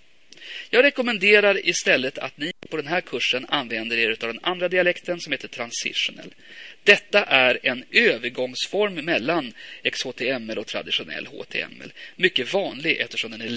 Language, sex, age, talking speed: Swedish, male, 30-49, 140 wpm